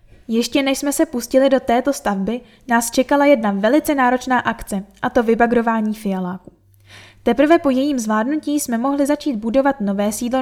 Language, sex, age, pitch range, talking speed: Czech, female, 10-29, 220-270 Hz, 160 wpm